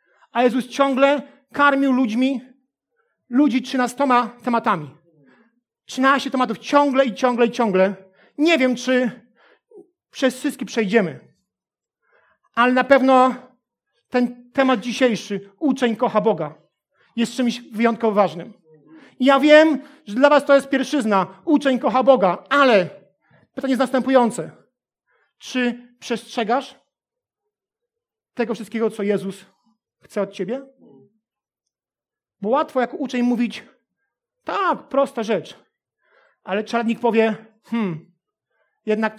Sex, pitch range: male, 210-270 Hz